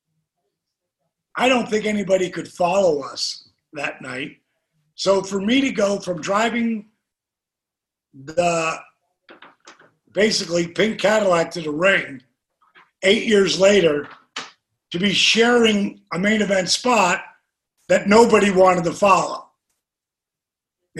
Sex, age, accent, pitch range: male, 50-69, American, 160-215 Hz